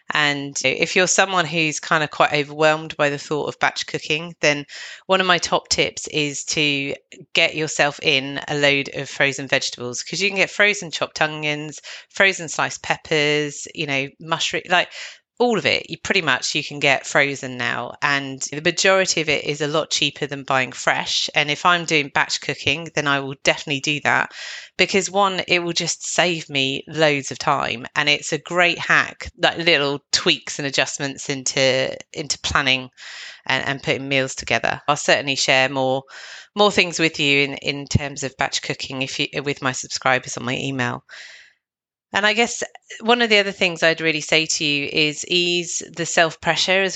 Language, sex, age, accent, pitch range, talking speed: English, female, 30-49, British, 140-175 Hz, 190 wpm